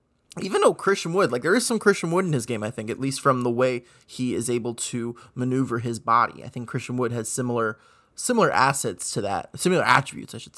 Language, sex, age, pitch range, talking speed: English, male, 20-39, 125-150 Hz, 235 wpm